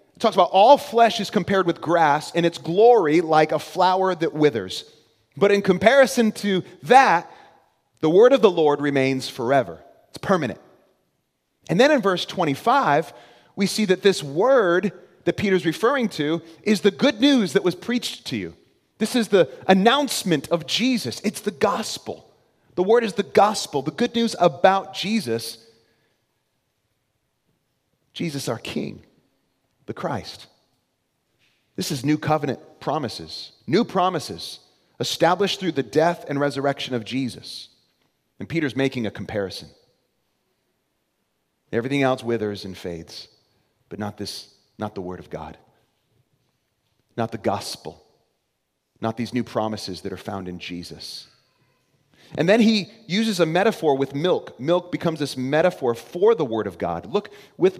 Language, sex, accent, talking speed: English, male, American, 145 wpm